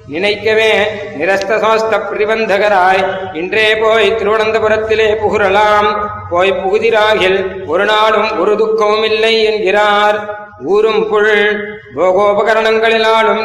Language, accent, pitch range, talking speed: Tamil, native, 205-225 Hz, 85 wpm